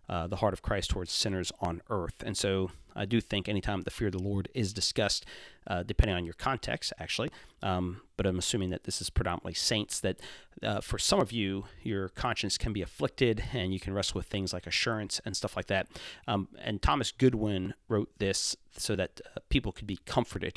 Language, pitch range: English, 95-115 Hz